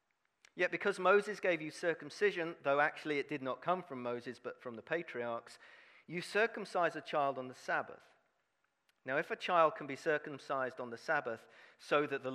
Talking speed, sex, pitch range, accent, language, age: 185 wpm, male, 140-190 Hz, British, English, 50-69